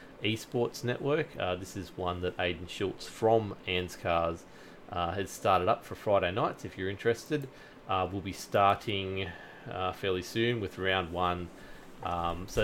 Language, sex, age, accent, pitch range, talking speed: English, male, 30-49, Australian, 90-110 Hz, 160 wpm